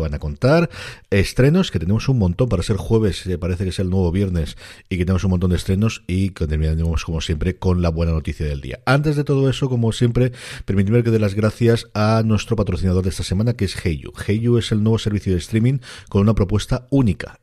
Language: Spanish